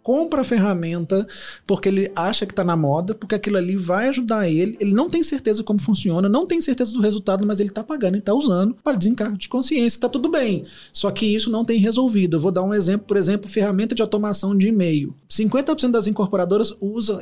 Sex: male